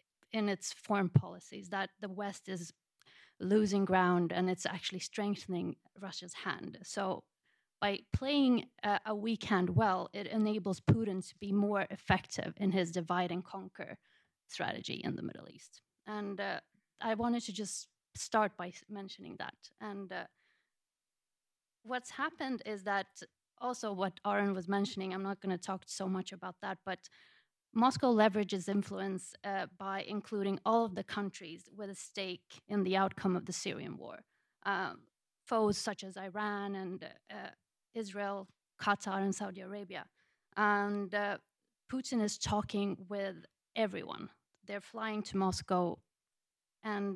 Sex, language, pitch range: female, English, 190-210 Hz